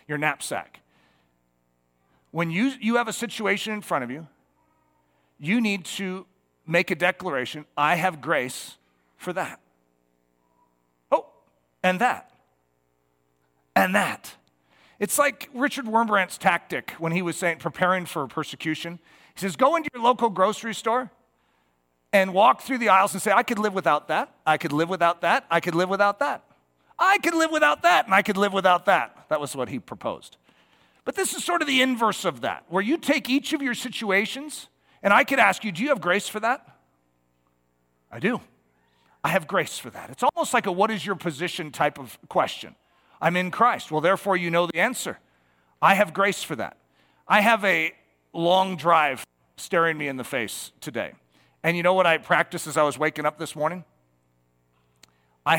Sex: male